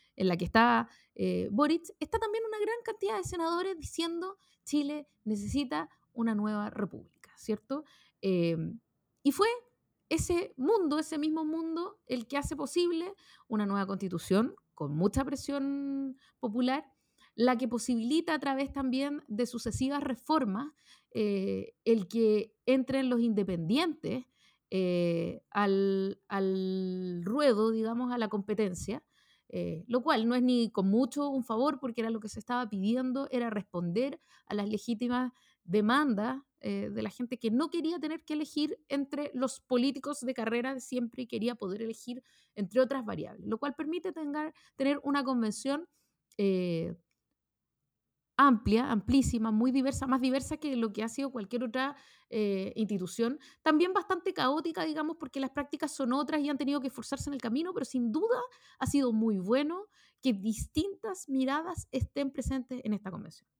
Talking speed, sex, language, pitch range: 150 wpm, female, Spanish, 220-295 Hz